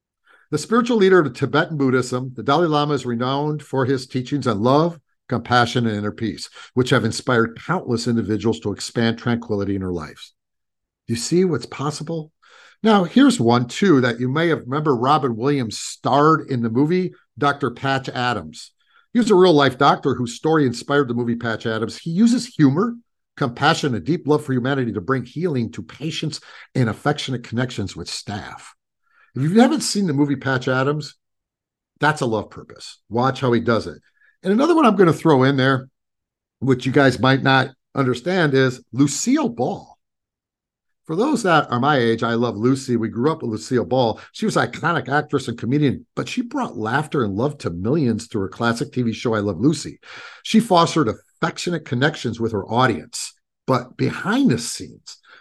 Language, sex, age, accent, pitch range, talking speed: English, male, 50-69, American, 120-155 Hz, 185 wpm